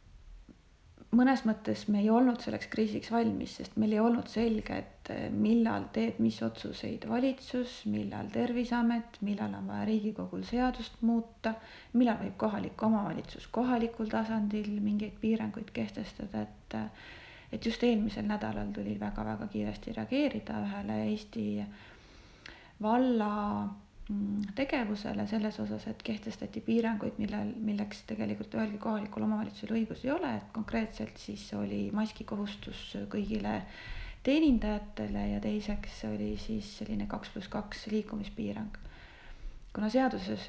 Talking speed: 120 wpm